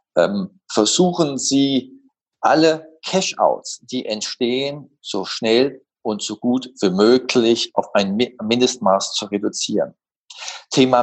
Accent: German